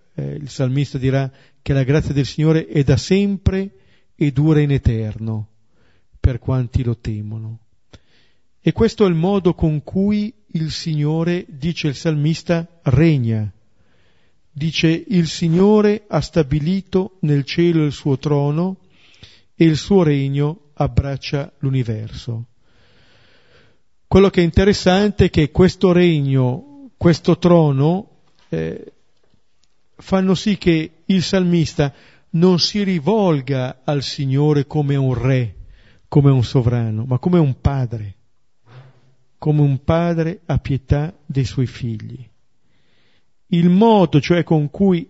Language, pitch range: Italian, 130-170 Hz